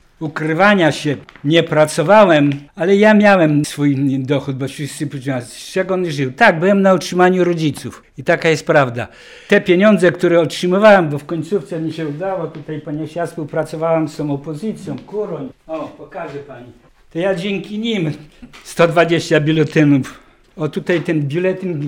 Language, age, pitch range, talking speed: Polish, 60-79, 150-180 Hz, 155 wpm